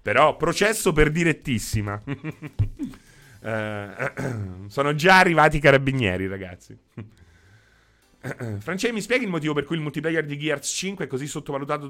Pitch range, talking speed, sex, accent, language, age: 105-155 Hz, 150 wpm, male, native, Italian, 30-49